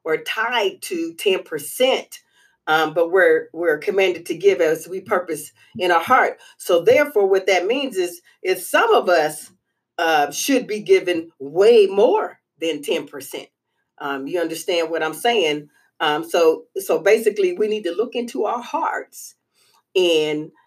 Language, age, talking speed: English, 40-59, 160 wpm